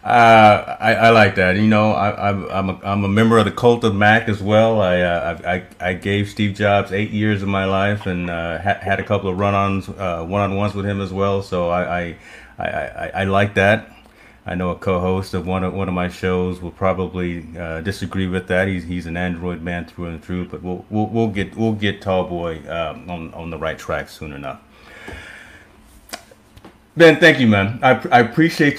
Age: 30-49